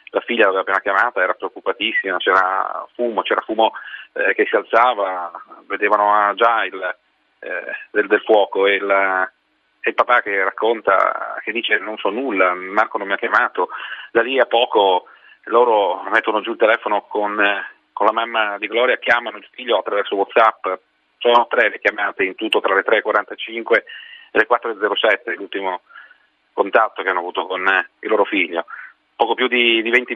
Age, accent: 30-49, native